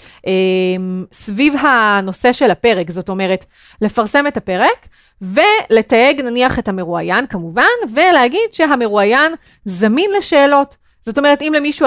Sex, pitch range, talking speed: female, 205-280 Hz, 110 wpm